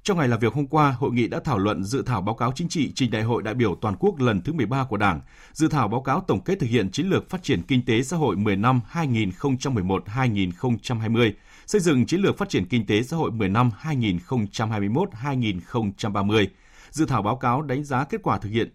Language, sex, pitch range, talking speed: Vietnamese, male, 105-135 Hz, 225 wpm